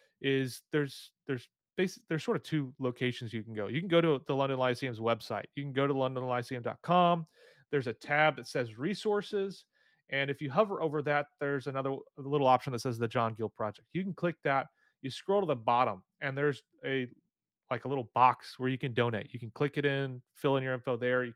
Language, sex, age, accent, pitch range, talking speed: English, male, 30-49, American, 125-160 Hz, 220 wpm